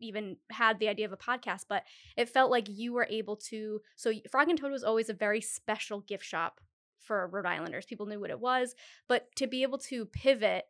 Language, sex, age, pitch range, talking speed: English, female, 20-39, 210-255 Hz, 225 wpm